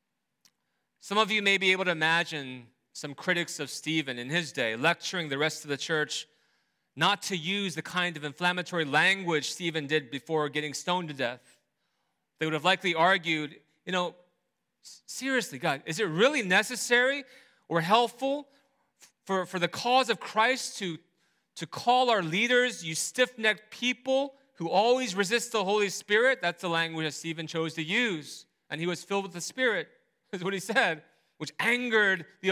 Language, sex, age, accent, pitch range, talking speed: English, male, 30-49, American, 155-240 Hz, 170 wpm